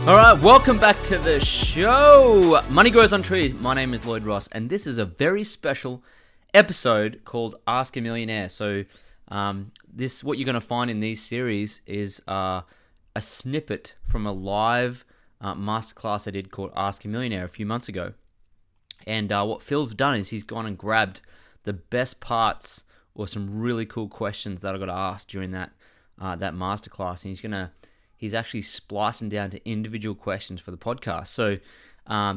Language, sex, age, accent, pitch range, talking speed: English, male, 20-39, Australian, 100-120 Hz, 185 wpm